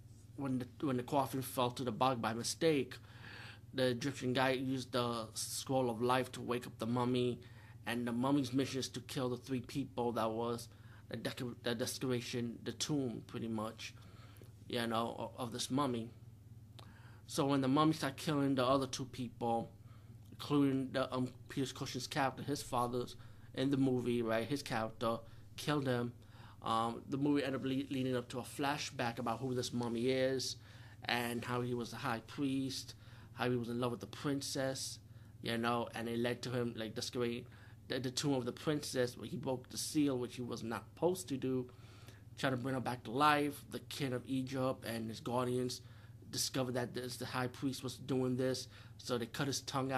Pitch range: 115-130 Hz